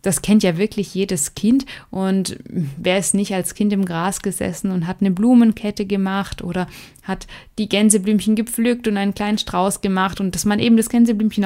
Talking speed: 190 wpm